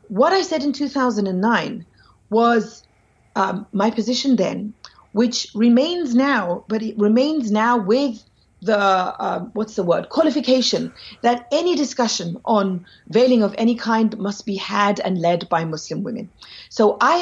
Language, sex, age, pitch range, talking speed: Dutch, female, 40-59, 190-250 Hz, 145 wpm